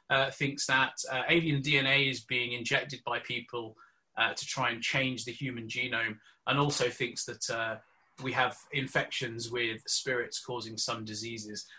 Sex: male